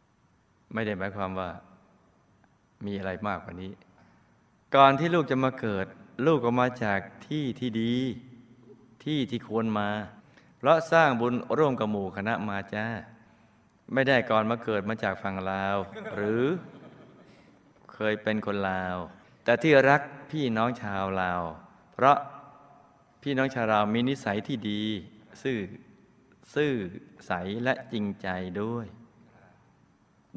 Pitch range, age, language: 100-130 Hz, 20-39, Thai